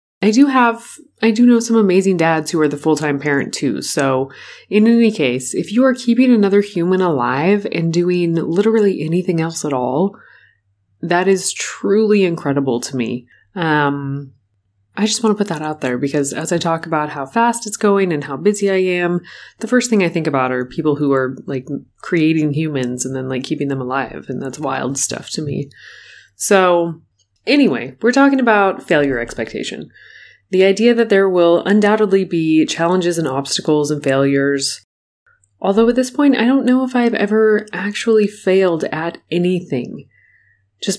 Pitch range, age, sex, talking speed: 140-200 Hz, 20-39, female, 175 wpm